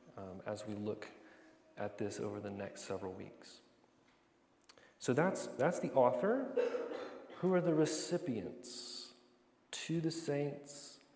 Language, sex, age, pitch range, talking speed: English, male, 30-49, 110-135 Hz, 125 wpm